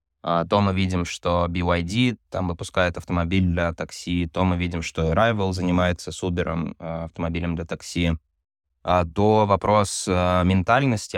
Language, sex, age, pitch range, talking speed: Russian, male, 20-39, 85-95 Hz, 125 wpm